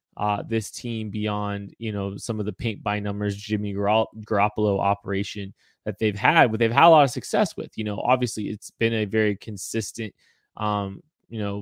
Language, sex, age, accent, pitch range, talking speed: English, male, 20-39, American, 105-120 Hz, 190 wpm